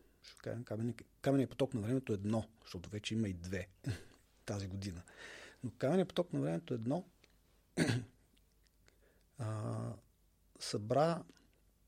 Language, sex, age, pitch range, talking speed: Bulgarian, male, 40-59, 95-125 Hz, 110 wpm